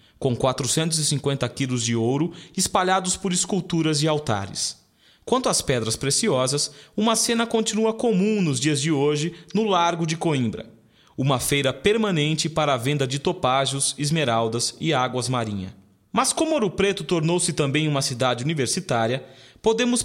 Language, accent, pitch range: Chinese, Brazilian, 130-180 Hz